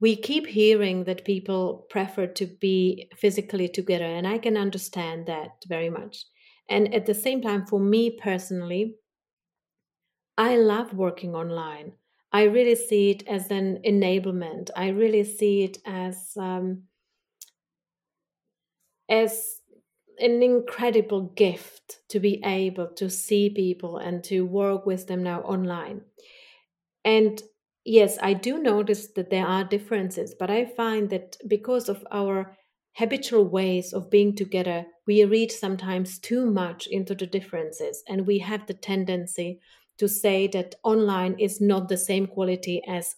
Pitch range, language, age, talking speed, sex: 185-220 Hz, English, 30-49, 145 wpm, female